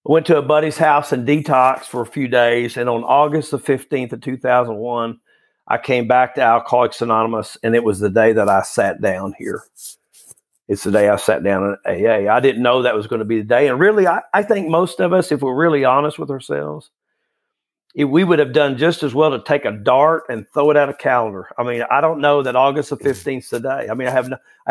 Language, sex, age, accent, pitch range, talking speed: English, male, 50-69, American, 120-150 Hz, 250 wpm